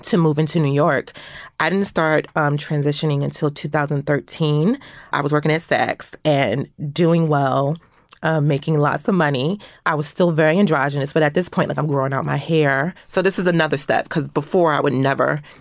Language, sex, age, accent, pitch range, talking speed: English, female, 30-49, American, 145-175 Hz, 190 wpm